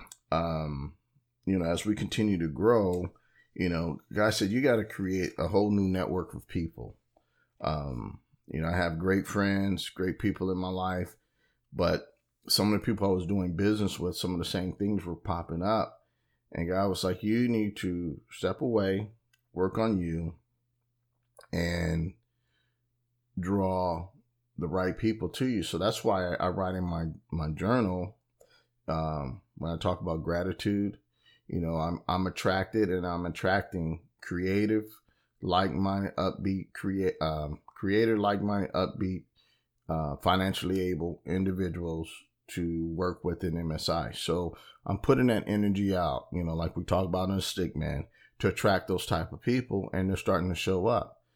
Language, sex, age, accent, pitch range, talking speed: English, male, 30-49, American, 85-100 Hz, 160 wpm